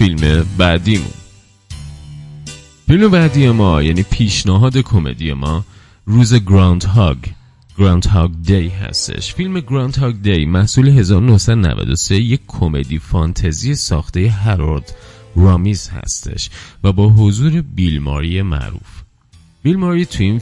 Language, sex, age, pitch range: Persian, male, 30-49, 85-120 Hz